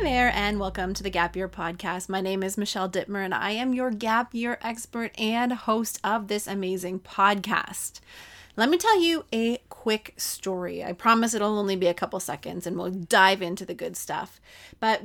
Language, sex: English, female